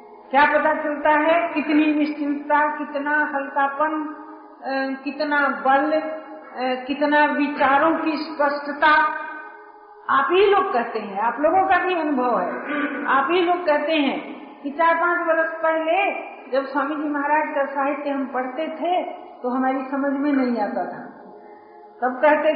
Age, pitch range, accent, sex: 50-69, 280-335 Hz, native, female